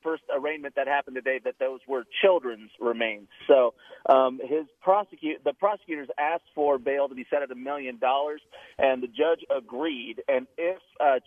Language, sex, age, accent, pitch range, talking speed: English, male, 40-59, American, 130-165 Hz, 175 wpm